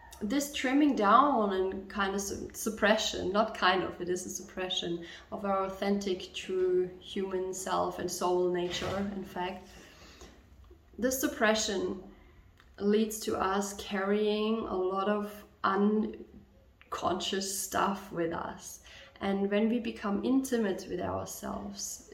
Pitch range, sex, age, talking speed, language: 185-220 Hz, female, 20-39, 120 wpm, German